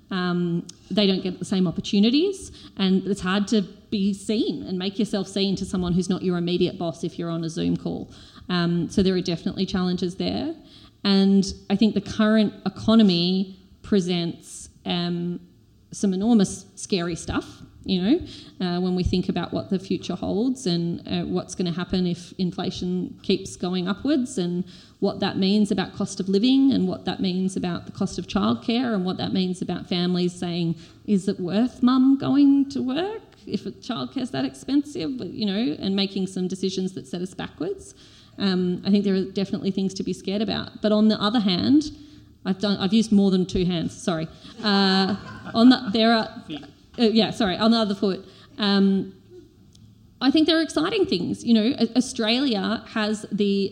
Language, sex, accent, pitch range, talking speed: English, female, Australian, 185-235 Hz, 185 wpm